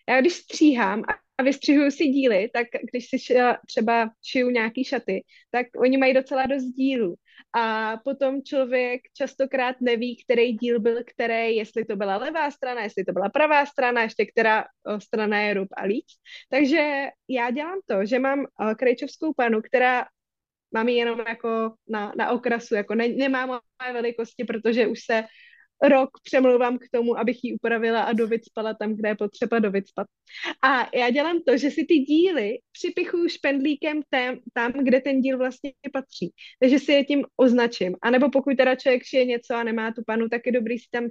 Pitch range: 225-265 Hz